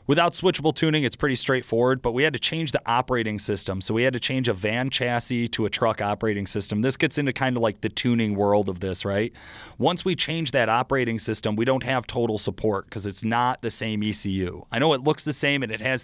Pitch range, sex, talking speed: 105-135 Hz, male, 245 wpm